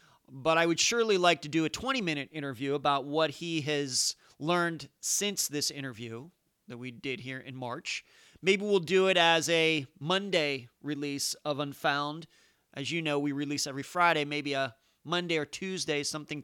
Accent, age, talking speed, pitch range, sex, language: American, 40-59, 170 wpm, 140-175 Hz, male, English